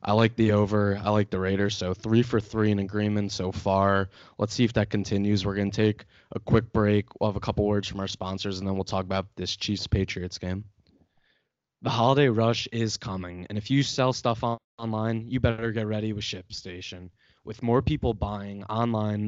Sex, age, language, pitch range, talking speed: male, 20-39, English, 100-115 Hz, 205 wpm